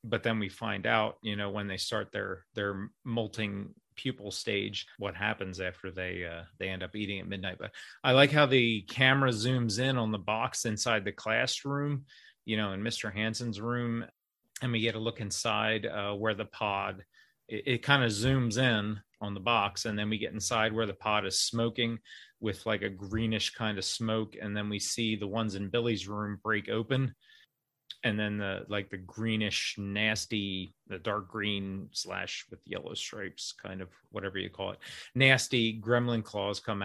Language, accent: English, American